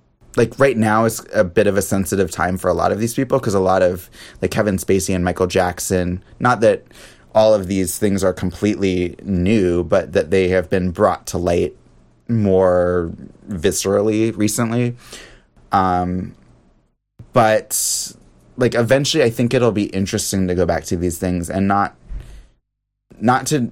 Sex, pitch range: male, 90-110 Hz